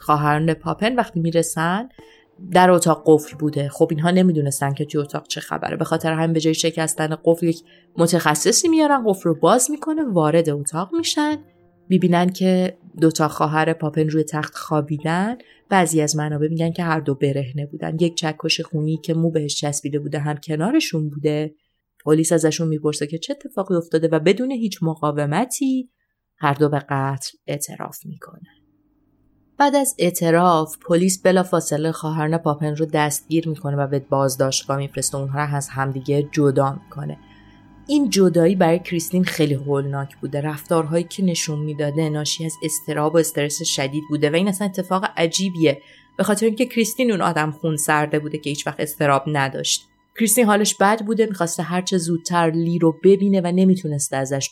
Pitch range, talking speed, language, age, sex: 150-175 Hz, 170 wpm, Persian, 30-49, female